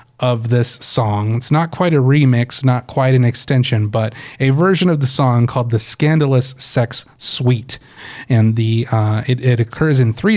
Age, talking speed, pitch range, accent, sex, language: 30-49, 180 wpm, 115-135 Hz, American, male, English